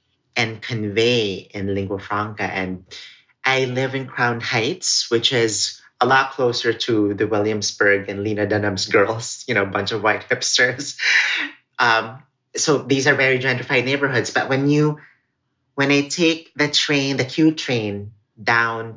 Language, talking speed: English, 155 wpm